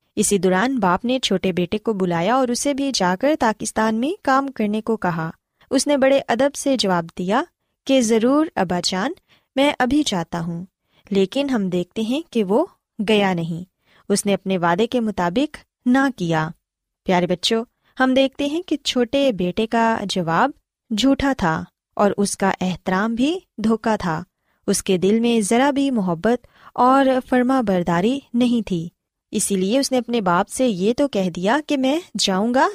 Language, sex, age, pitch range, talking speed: Punjabi, female, 20-39, 185-265 Hz, 160 wpm